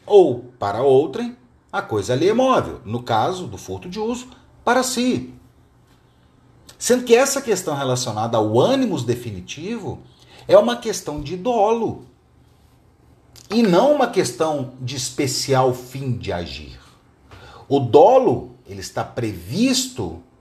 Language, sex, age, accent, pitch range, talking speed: Portuguese, male, 40-59, Brazilian, 115-175 Hz, 125 wpm